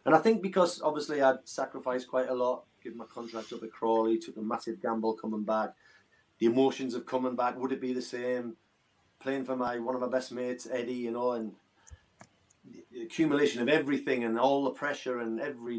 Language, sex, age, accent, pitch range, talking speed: English, male, 30-49, British, 100-125 Hz, 205 wpm